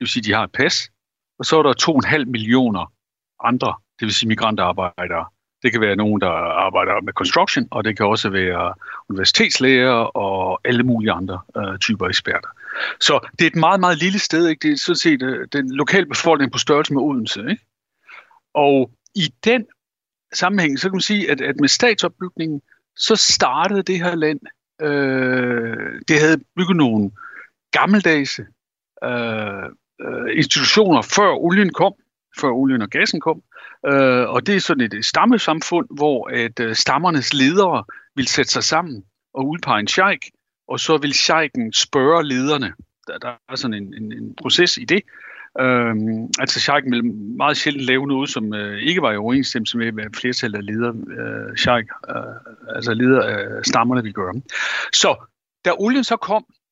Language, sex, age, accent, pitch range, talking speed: Danish, male, 60-79, native, 115-180 Hz, 160 wpm